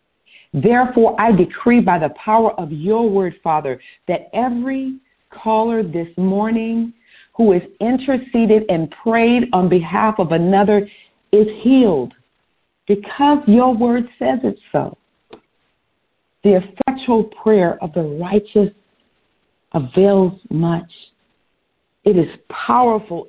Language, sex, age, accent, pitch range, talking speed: English, female, 50-69, American, 180-245 Hz, 110 wpm